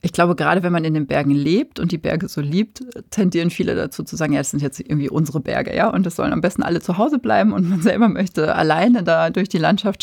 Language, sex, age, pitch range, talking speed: German, female, 30-49, 155-190 Hz, 270 wpm